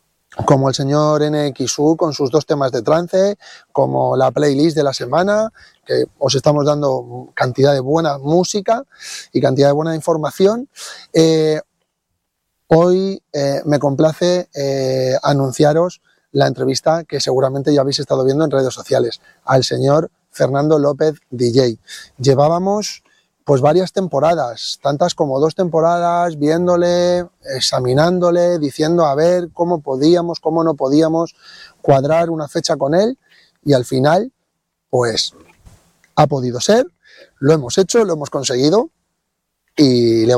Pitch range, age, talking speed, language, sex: 140-170 Hz, 30-49, 135 wpm, Spanish, male